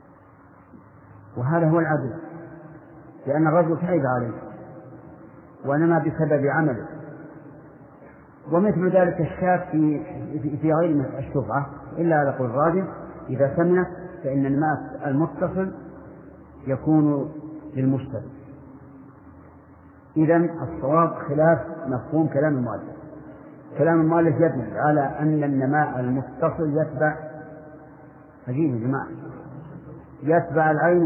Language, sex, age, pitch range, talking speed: Arabic, male, 50-69, 140-160 Hz, 90 wpm